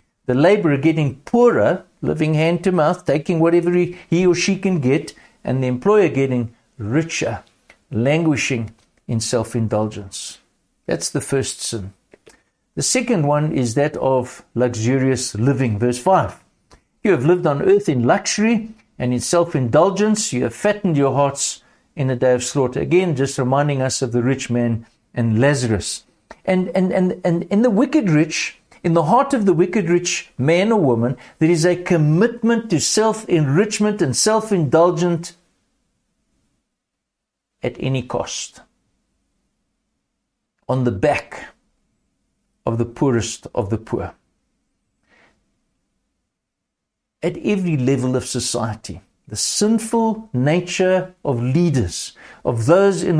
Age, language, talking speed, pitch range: 60-79, English, 135 wpm, 125-180 Hz